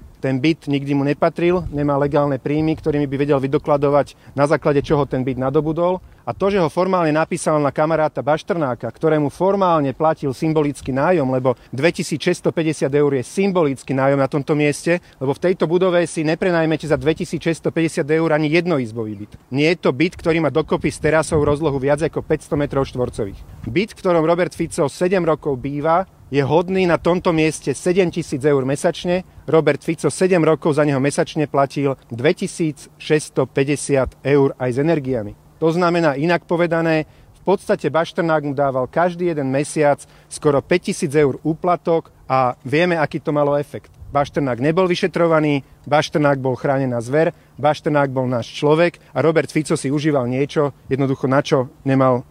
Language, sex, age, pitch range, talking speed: Slovak, male, 40-59, 140-165 Hz, 160 wpm